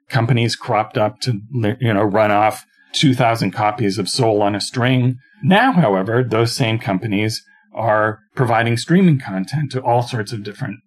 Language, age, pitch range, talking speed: English, 40-59, 110-140 Hz, 160 wpm